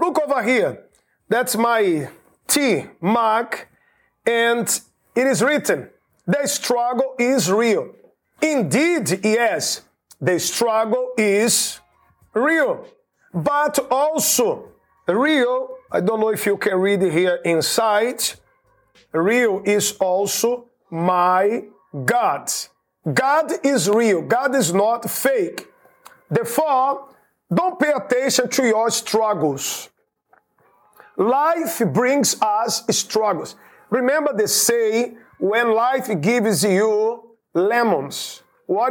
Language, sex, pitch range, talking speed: English, male, 210-265 Hz, 100 wpm